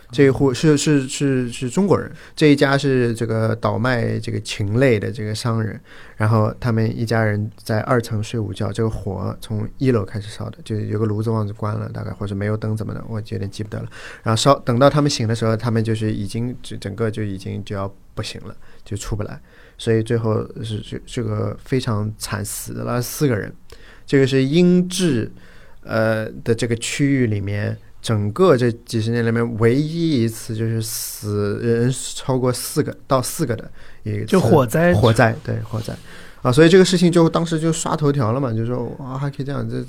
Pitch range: 110-130 Hz